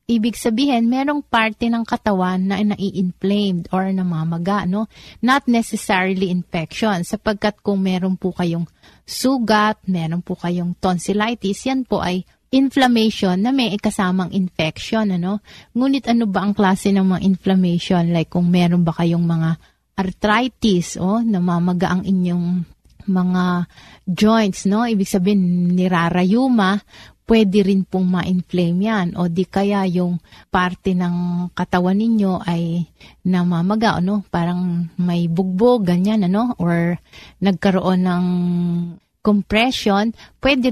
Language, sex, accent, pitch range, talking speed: Filipino, female, native, 175-210 Hz, 125 wpm